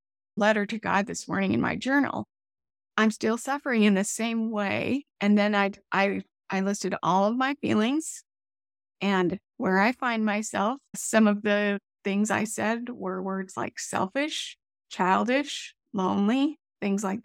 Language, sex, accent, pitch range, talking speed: English, female, American, 195-245 Hz, 155 wpm